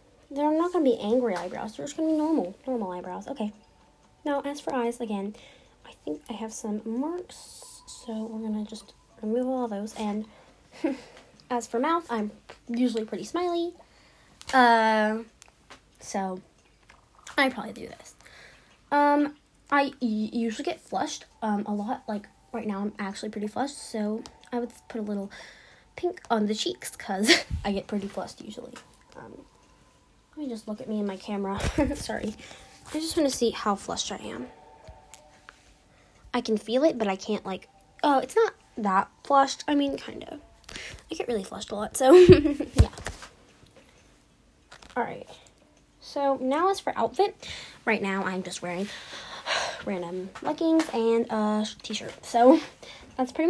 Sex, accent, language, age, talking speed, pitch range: female, American, English, 10-29, 160 wpm, 210-285 Hz